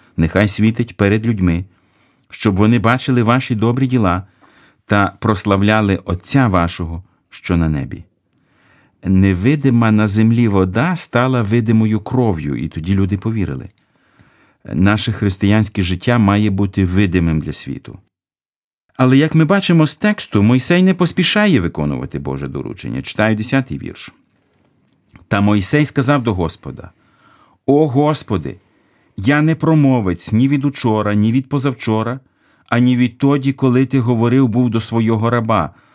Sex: male